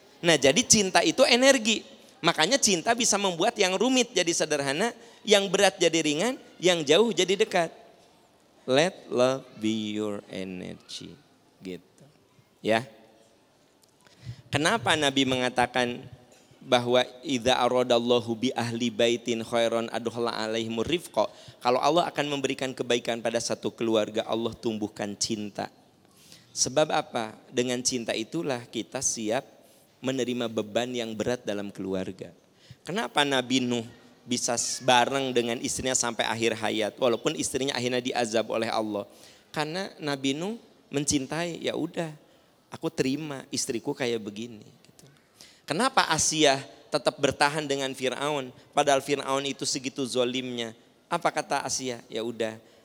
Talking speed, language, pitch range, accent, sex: 120 wpm, Indonesian, 115-145 Hz, native, male